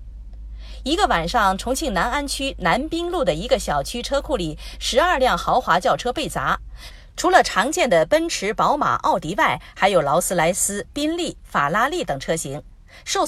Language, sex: Chinese, female